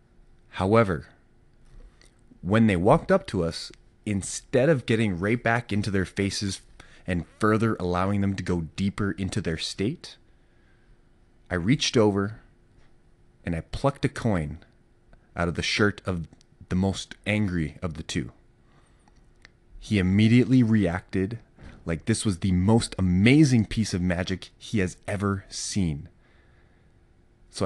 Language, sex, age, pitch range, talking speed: English, male, 30-49, 90-115 Hz, 130 wpm